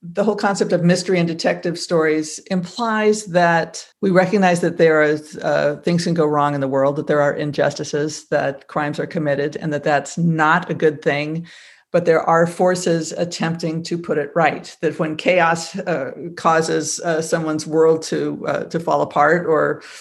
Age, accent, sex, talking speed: 50-69, American, female, 185 wpm